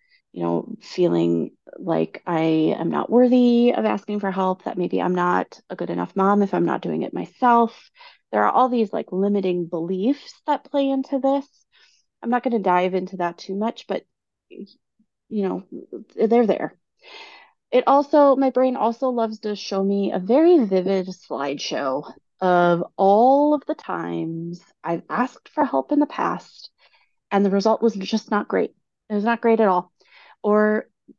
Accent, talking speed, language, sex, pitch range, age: American, 175 wpm, English, female, 195-265 Hz, 30-49